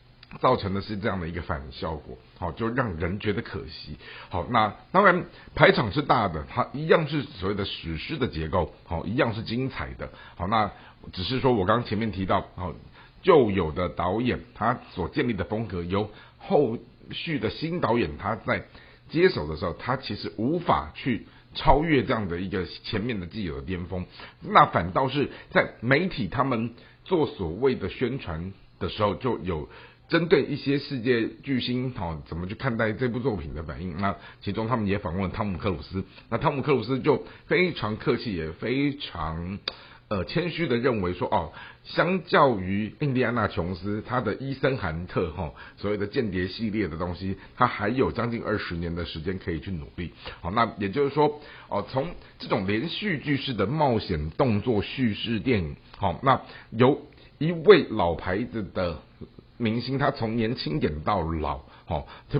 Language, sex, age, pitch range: Chinese, male, 50-69, 90-125 Hz